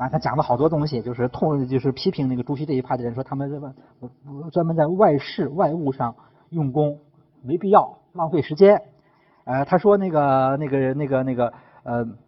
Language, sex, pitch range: Chinese, male, 130-170 Hz